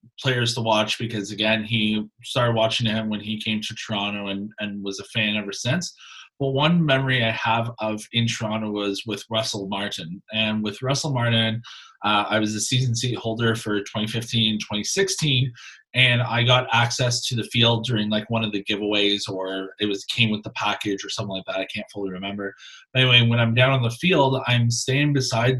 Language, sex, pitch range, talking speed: English, male, 110-130 Hz, 200 wpm